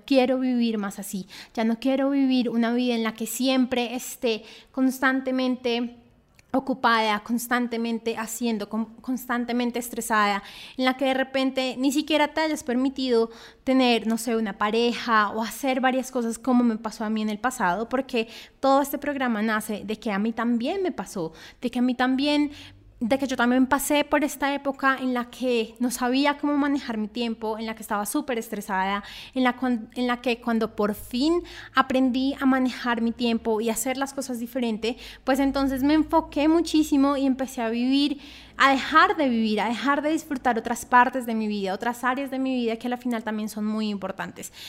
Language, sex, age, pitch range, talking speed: Spanish, female, 20-39, 225-270 Hz, 190 wpm